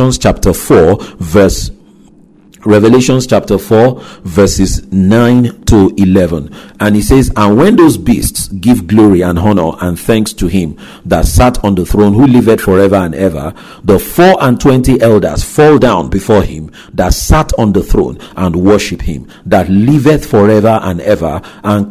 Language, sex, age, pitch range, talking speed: English, male, 50-69, 95-120 Hz, 160 wpm